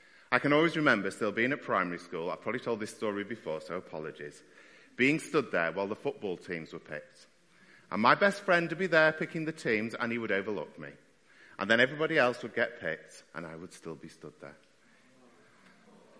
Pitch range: 110-155 Hz